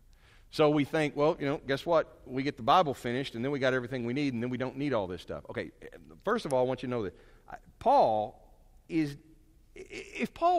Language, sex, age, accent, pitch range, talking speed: English, male, 50-69, American, 105-145 Hz, 230 wpm